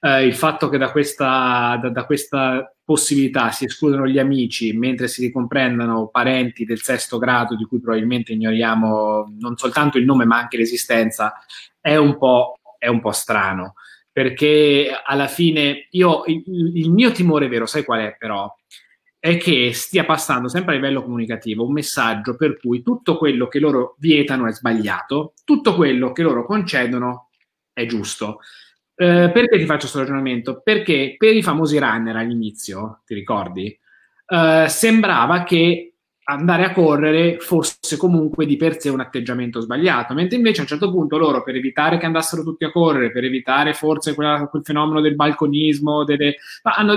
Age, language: 20-39, Italian